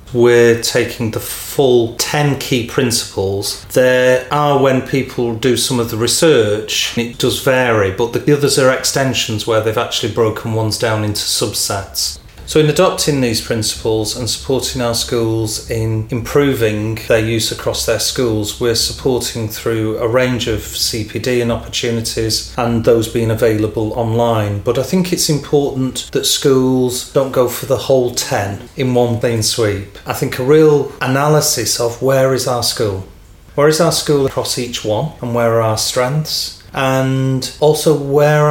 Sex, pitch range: male, 110-135 Hz